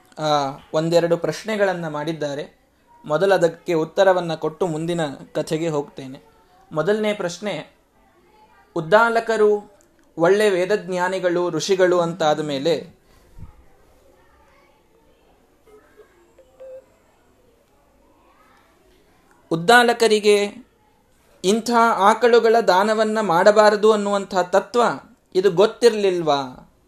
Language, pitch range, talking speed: Kannada, 165-220 Hz, 60 wpm